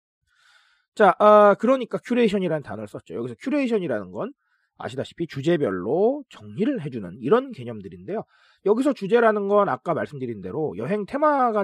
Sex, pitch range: male, 155-235 Hz